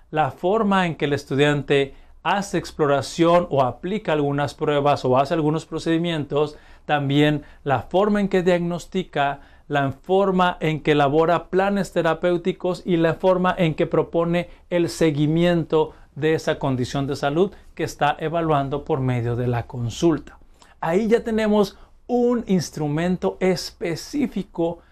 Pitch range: 145-190 Hz